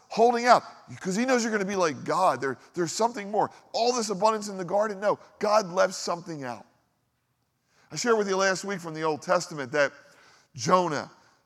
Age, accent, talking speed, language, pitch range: 40-59, American, 195 wpm, English, 140-195 Hz